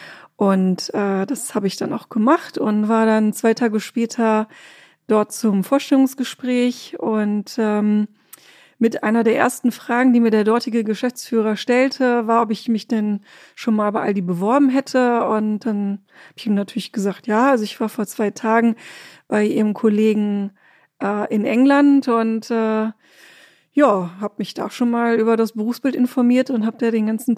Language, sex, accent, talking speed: German, female, German, 170 wpm